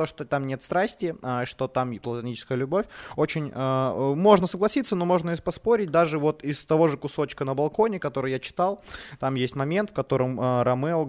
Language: Ukrainian